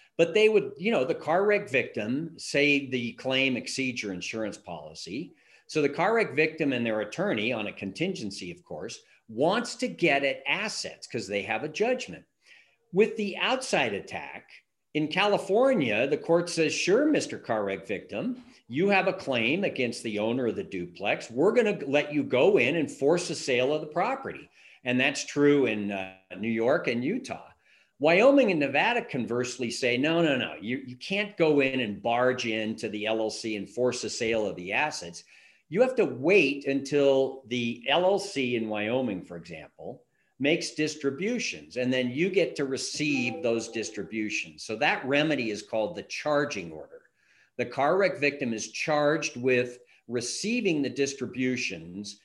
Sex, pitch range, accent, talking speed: male, 120-180 Hz, American, 170 wpm